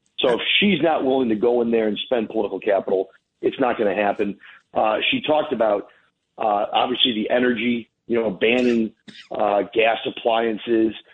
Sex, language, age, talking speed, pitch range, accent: male, English, 40-59, 165 wpm, 115-170 Hz, American